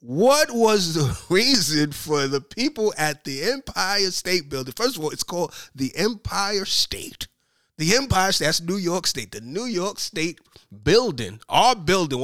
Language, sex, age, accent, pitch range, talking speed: English, male, 30-49, American, 150-200 Hz, 165 wpm